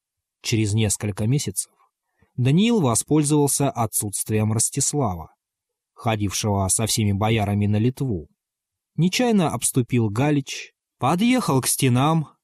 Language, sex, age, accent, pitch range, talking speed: Russian, male, 20-39, native, 100-135 Hz, 90 wpm